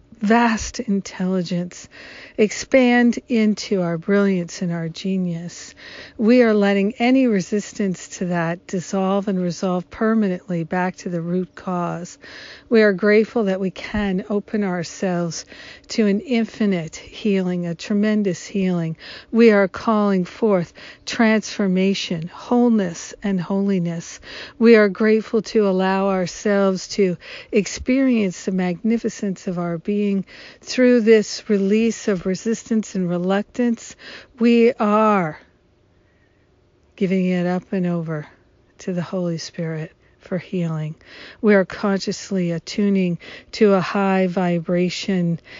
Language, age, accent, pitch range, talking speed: English, 50-69, American, 175-215 Hz, 115 wpm